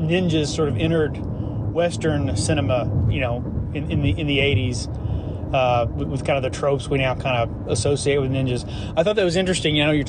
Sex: male